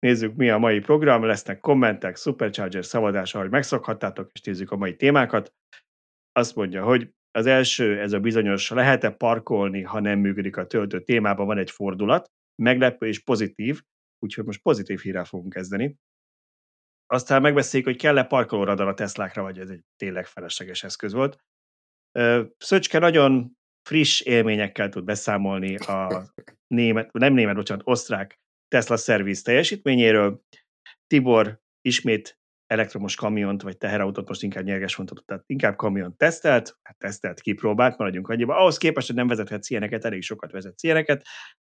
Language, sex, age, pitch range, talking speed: Hungarian, male, 30-49, 95-125 Hz, 145 wpm